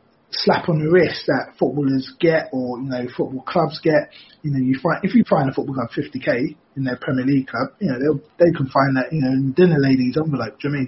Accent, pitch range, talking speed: British, 130-170 Hz, 255 wpm